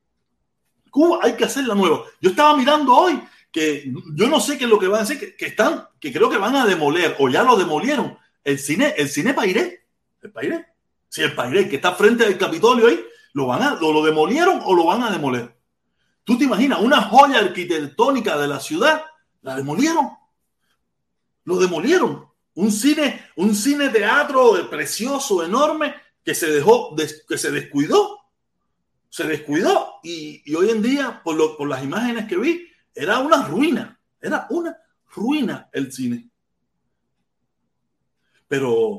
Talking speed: 170 wpm